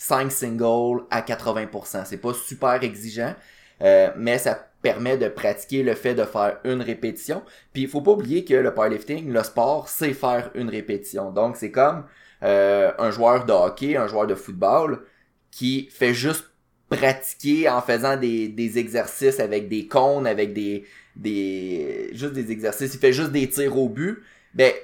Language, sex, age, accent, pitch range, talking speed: French, male, 20-39, Canadian, 110-140 Hz, 175 wpm